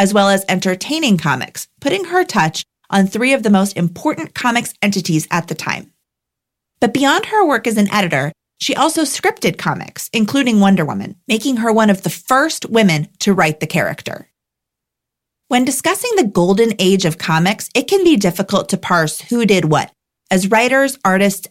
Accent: American